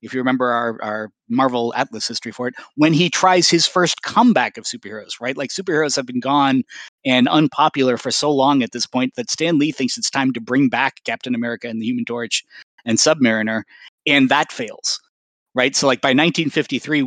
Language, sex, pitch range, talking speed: English, male, 120-145 Hz, 200 wpm